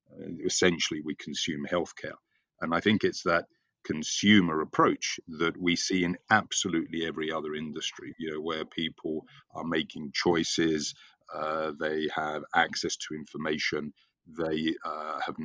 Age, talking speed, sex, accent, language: 40-59, 140 wpm, male, British, English